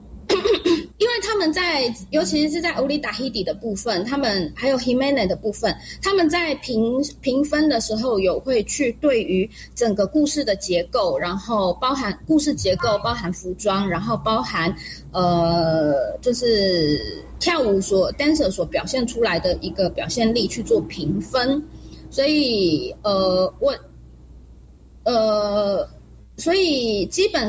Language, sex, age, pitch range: Chinese, female, 20-39, 195-295 Hz